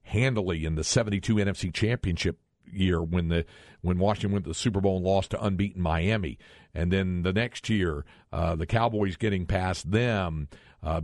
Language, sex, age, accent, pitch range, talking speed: English, male, 50-69, American, 95-120 Hz, 180 wpm